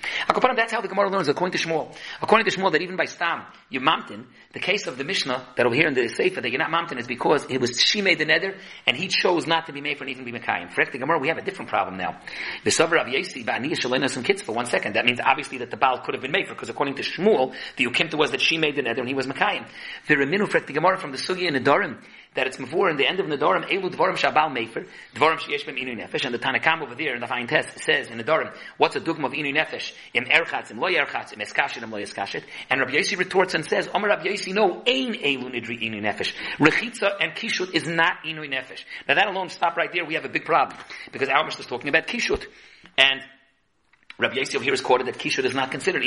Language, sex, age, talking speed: English, male, 40-59, 250 wpm